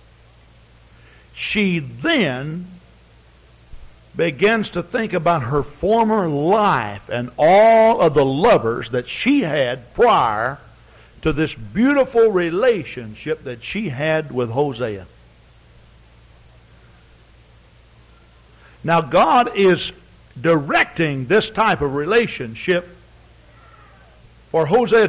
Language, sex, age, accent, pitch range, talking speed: English, male, 60-79, American, 145-220 Hz, 90 wpm